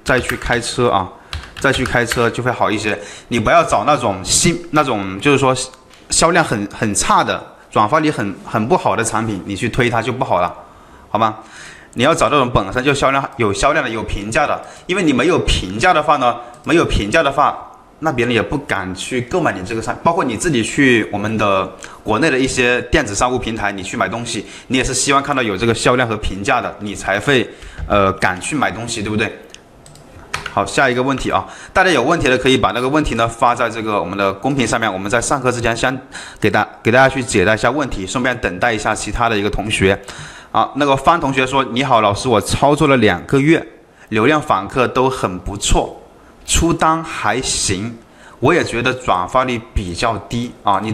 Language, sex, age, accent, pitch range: Chinese, male, 20-39, native, 105-130 Hz